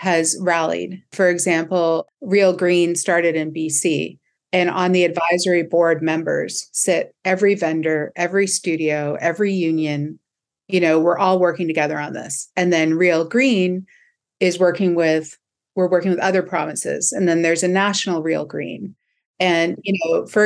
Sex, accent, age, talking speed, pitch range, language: female, American, 40-59, 155 wpm, 165-190 Hz, English